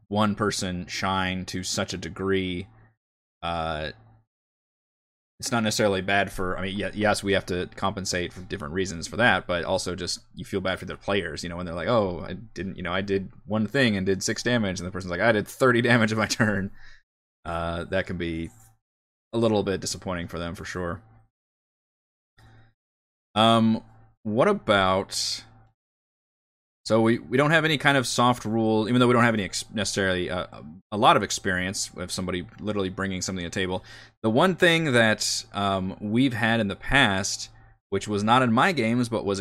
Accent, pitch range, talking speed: American, 90-110 Hz, 195 wpm